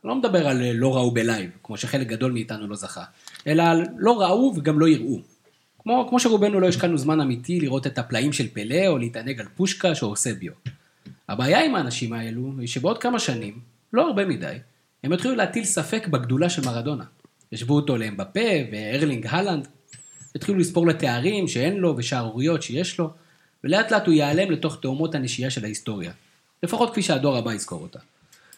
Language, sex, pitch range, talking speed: Hebrew, male, 125-170 Hz, 160 wpm